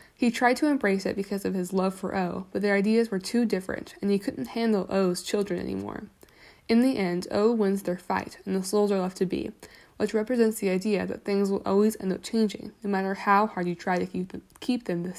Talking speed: 230 wpm